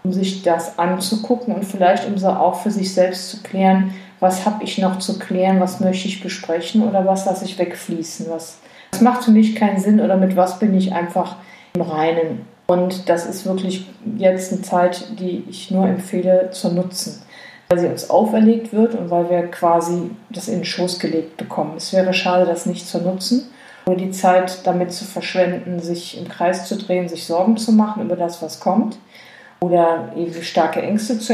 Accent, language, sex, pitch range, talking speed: German, German, female, 175-200 Hz, 195 wpm